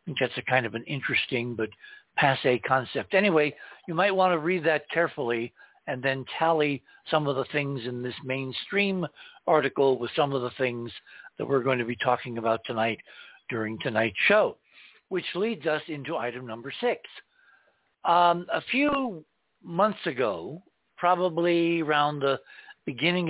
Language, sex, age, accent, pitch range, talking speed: English, male, 60-79, American, 135-170 Hz, 155 wpm